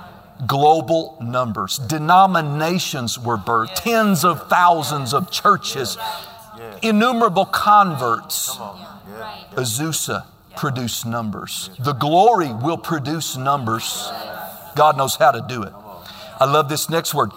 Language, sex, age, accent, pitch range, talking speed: English, male, 50-69, American, 120-175 Hz, 105 wpm